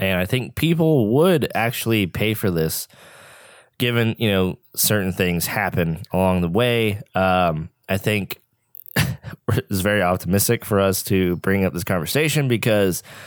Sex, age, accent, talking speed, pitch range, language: male, 20-39, American, 145 wpm, 90-115 Hz, English